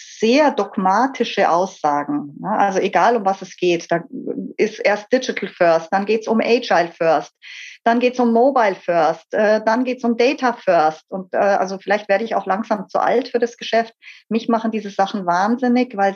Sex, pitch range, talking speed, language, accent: female, 200-245 Hz, 180 wpm, German, German